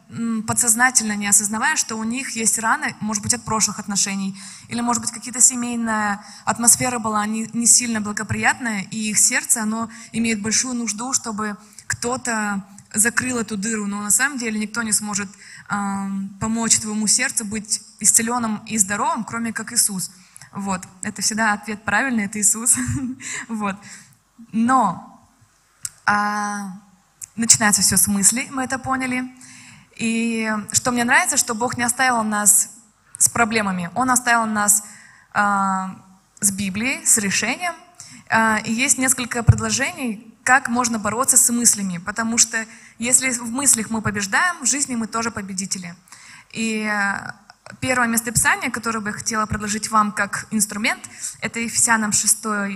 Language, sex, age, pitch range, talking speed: Russian, female, 20-39, 205-240 Hz, 145 wpm